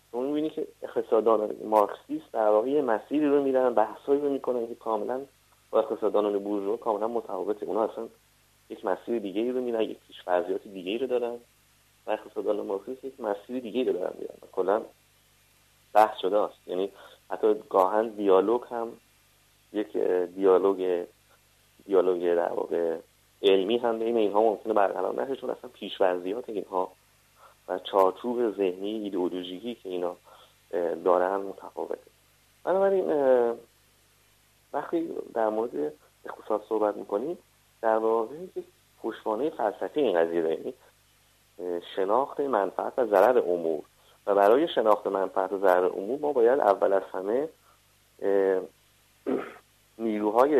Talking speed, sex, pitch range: 125 wpm, male, 95-130 Hz